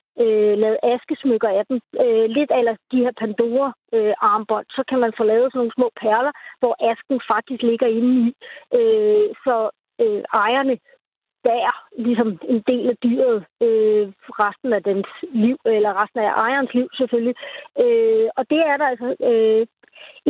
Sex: female